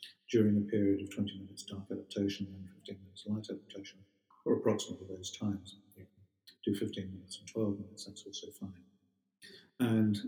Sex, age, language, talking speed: male, 50-69, English, 170 wpm